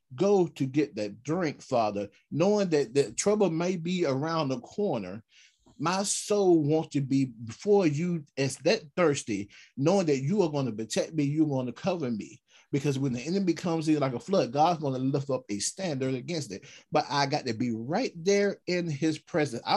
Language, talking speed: English, 205 wpm